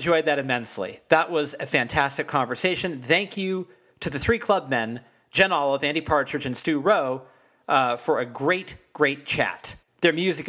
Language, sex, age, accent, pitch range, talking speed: English, male, 40-59, American, 130-170 Hz, 175 wpm